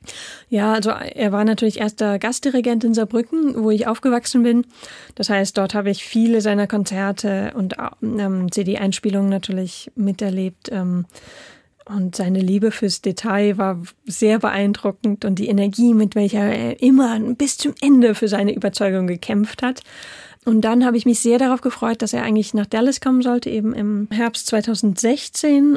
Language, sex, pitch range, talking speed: German, female, 195-225 Hz, 155 wpm